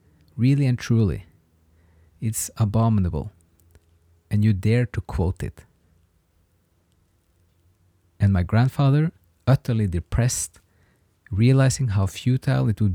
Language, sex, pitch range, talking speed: English, male, 90-120 Hz, 95 wpm